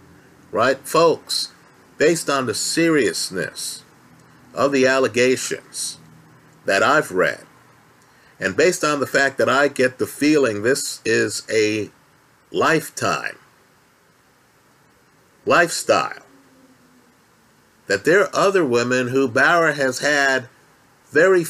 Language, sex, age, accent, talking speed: English, male, 50-69, American, 105 wpm